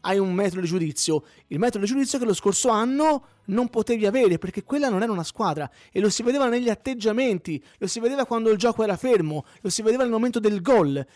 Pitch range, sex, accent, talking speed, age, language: 165-235 Hz, male, native, 230 wpm, 30-49, Italian